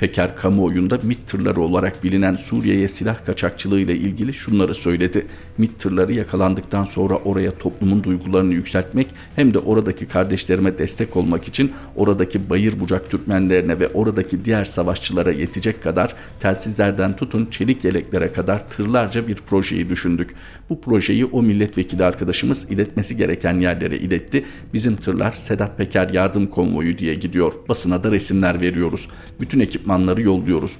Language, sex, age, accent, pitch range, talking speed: Turkish, male, 50-69, native, 90-105 Hz, 140 wpm